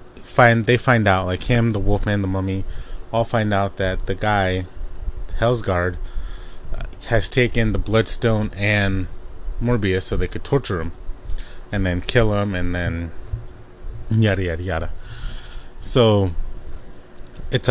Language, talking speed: English, 130 wpm